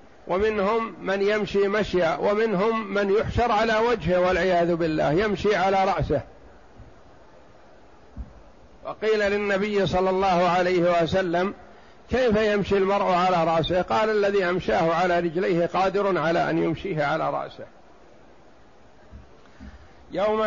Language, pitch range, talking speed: Arabic, 170-200 Hz, 110 wpm